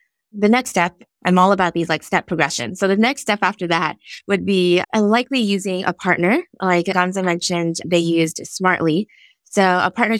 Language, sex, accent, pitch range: English, female, American, 165-195 Hz